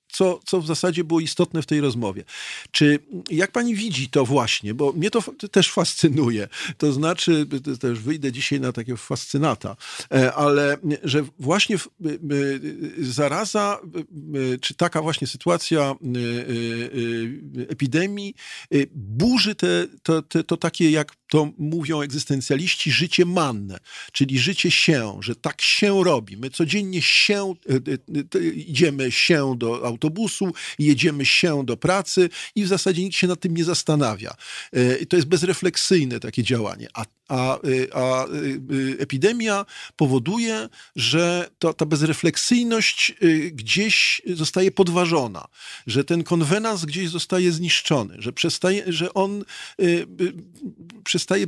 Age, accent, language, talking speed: 50-69, native, Polish, 135 wpm